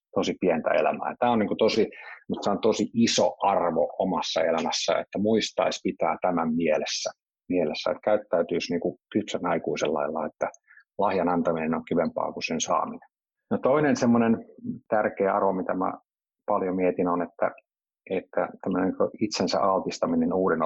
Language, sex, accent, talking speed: Finnish, male, native, 140 wpm